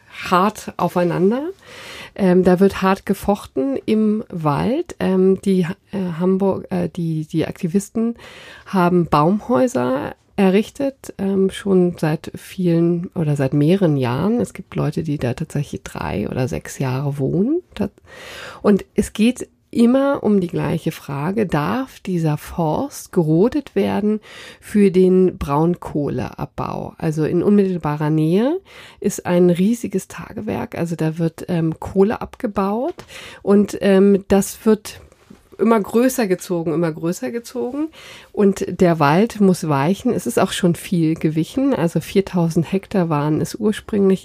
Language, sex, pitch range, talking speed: German, female, 165-205 Hz, 130 wpm